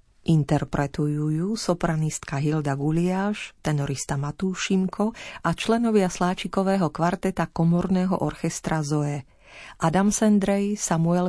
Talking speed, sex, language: 90 wpm, female, Slovak